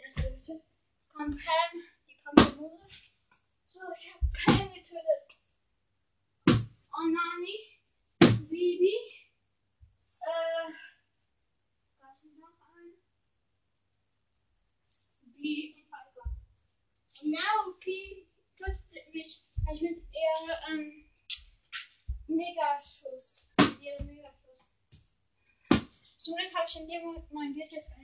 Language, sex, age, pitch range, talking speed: German, female, 10-29, 270-340 Hz, 70 wpm